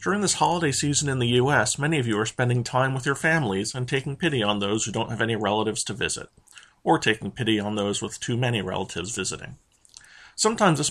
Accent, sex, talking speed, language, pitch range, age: American, male, 220 wpm, English, 110-135 Hz, 40-59